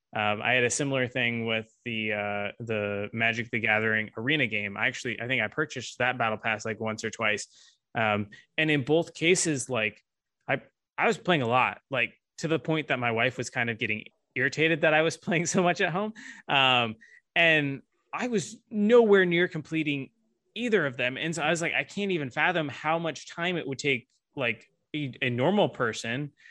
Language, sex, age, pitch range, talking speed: English, male, 20-39, 115-155 Hz, 205 wpm